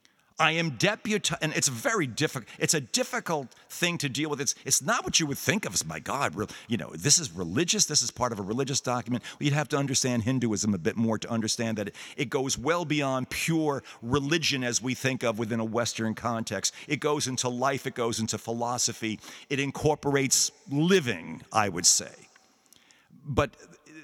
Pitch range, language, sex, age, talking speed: 115-150 Hz, English, male, 50-69, 200 wpm